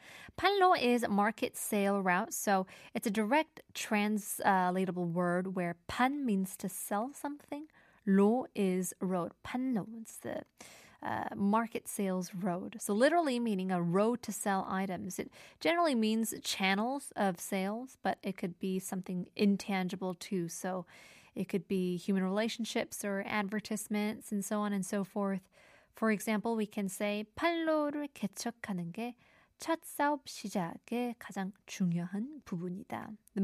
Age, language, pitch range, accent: 20-39, Korean, 190-230 Hz, American